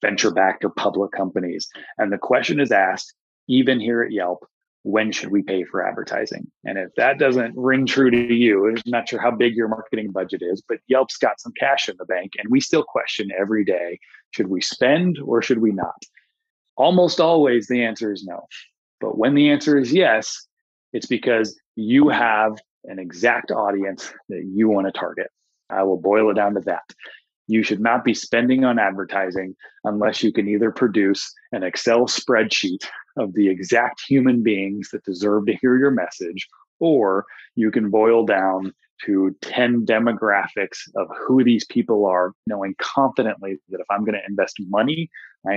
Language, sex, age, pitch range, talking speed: English, male, 30-49, 100-130 Hz, 180 wpm